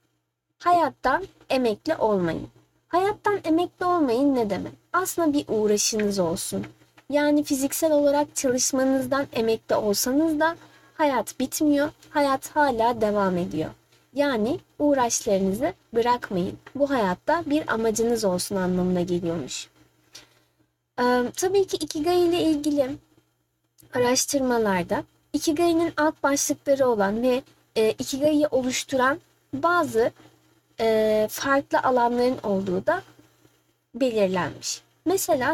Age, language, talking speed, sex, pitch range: 30-49, Turkish, 95 wpm, female, 220-305 Hz